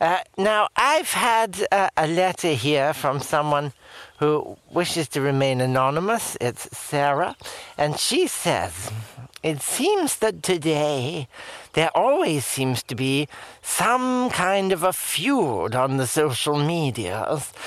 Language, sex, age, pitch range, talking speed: English, male, 60-79, 125-190 Hz, 130 wpm